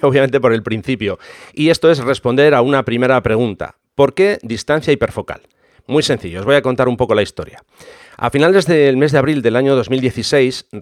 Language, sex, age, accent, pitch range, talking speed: English, male, 40-59, Spanish, 115-145 Hz, 195 wpm